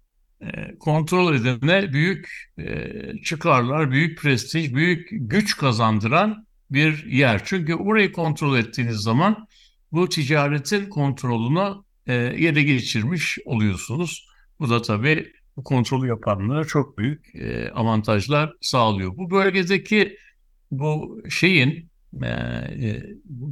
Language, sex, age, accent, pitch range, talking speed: Turkish, male, 60-79, native, 120-175 Hz, 105 wpm